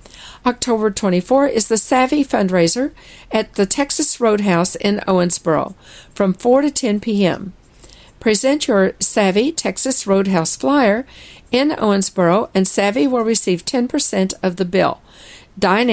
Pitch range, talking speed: 185-230 Hz, 130 wpm